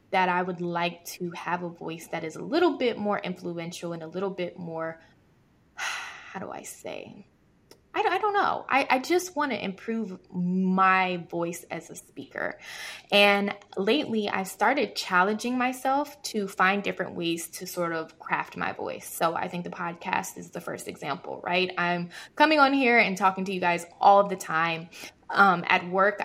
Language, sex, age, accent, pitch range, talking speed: English, female, 20-39, American, 175-205 Hz, 185 wpm